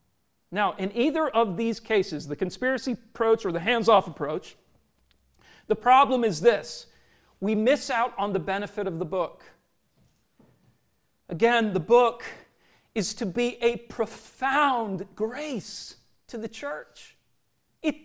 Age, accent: 40-59, American